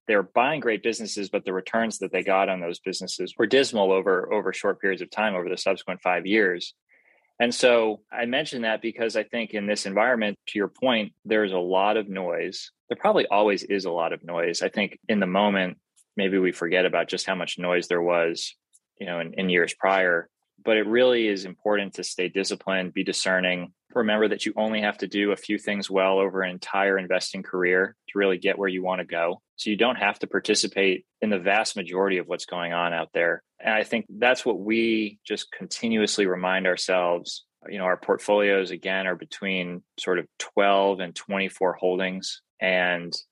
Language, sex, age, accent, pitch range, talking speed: English, male, 20-39, American, 90-100 Hz, 205 wpm